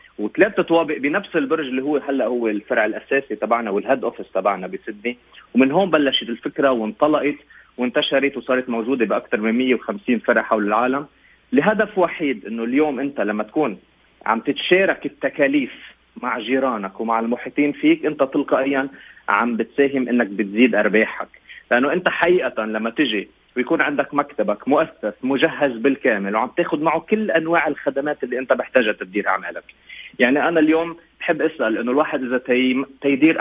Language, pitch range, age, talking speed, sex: Arabic, 115-150 Hz, 30-49, 145 wpm, male